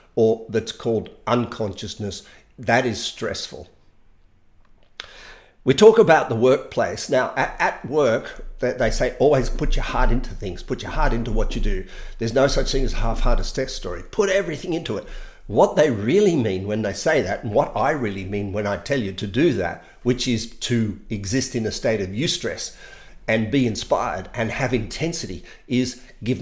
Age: 50-69